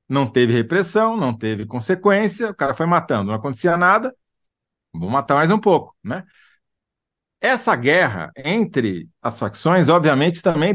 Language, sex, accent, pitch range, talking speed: Portuguese, male, Brazilian, 120-190 Hz, 145 wpm